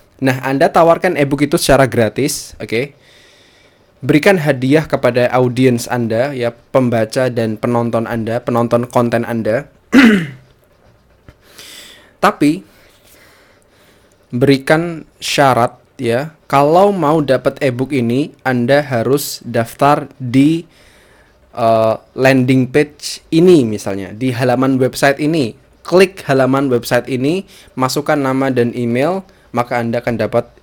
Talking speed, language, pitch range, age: 110 wpm, Indonesian, 115-140 Hz, 10-29